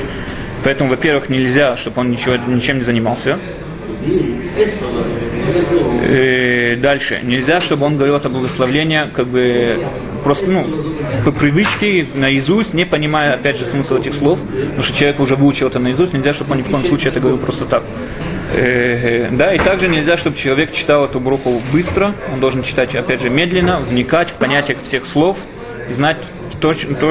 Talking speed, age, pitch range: 155 wpm, 20-39, 130-155 Hz